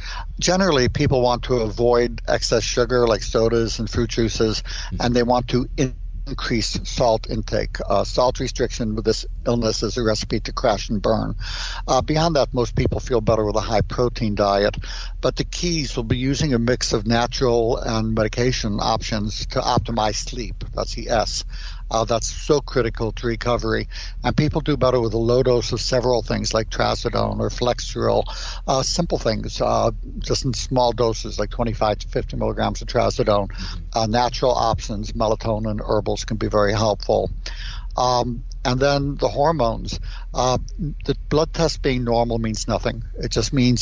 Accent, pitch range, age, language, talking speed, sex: American, 110-125 Hz, 60-79, English, 170 wpm, male